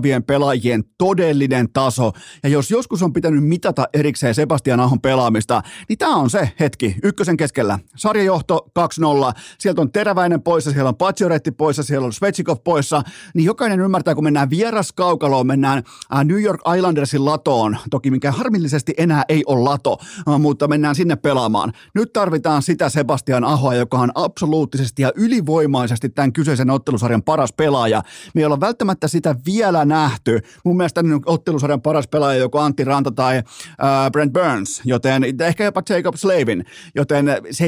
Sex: male